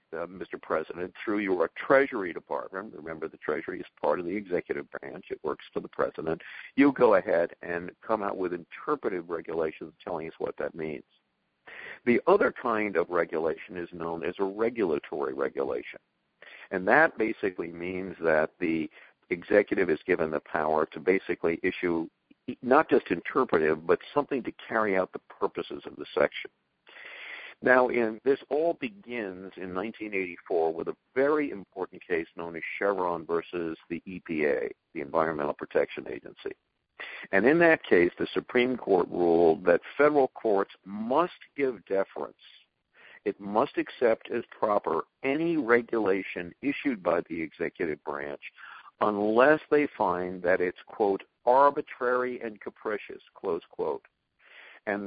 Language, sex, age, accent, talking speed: English, male, 50-69, American, 145 wpm